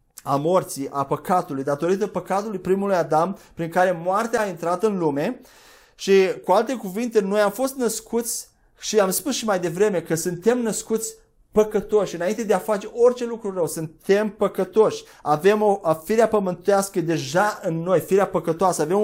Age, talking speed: 30-49, 165 wpm